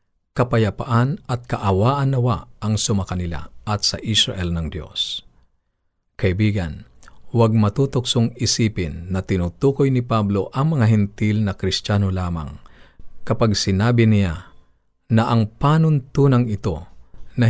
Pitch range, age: 95-125 Hz, 50-69